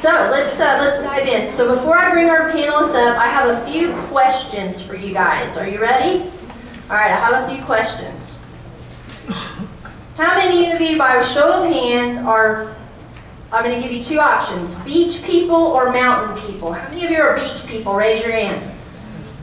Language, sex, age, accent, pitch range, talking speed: English, female, 30-49, American, 230-310 Hz, 190 wpm